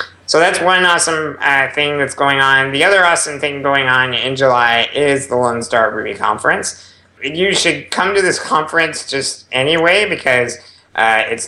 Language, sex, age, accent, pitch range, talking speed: English, male, 20-39, American, 110-135 Hz, 180 wpm